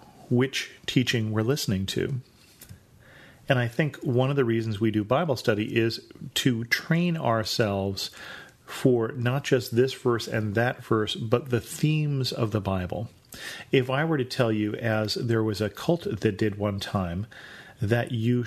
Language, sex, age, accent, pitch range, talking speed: English, male, 40-59, American, 110-135 Hz, 165 wpm